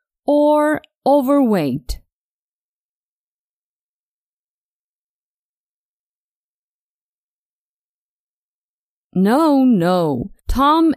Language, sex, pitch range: English, female, 200-300 Hz